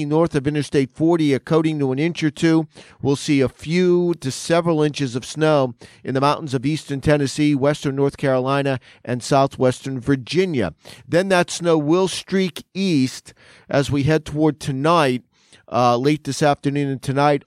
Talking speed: 170 wpm